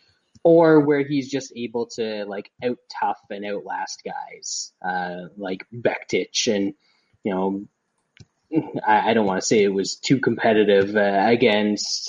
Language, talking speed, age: English, 150 wpm, 20-39